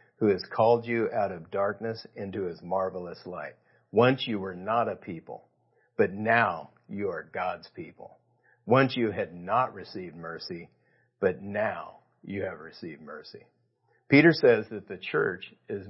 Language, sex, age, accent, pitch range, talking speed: English, male, 50-69, American, 100-125 Hz, 155 wpm